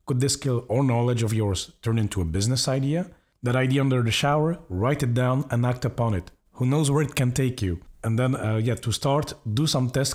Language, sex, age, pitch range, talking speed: English, male, 40-59, 110-135 Hz, 235 wpm